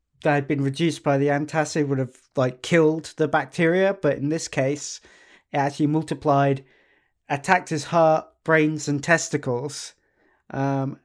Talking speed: 145 wpm